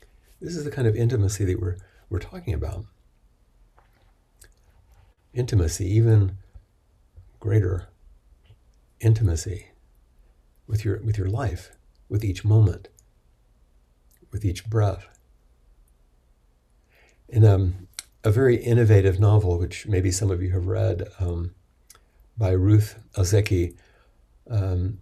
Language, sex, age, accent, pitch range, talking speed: English, male, 60-79, American, 85-110 Hz, 105 wpm